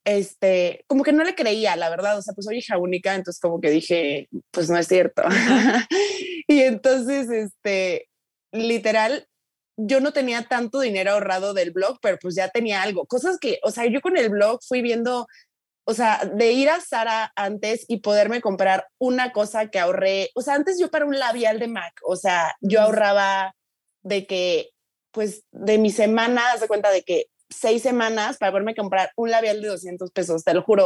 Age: 20-39